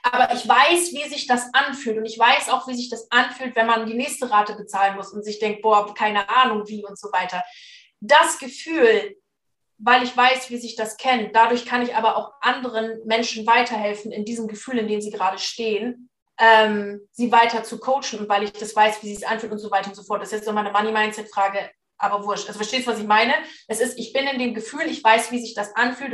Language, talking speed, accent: German, 240 wpm, German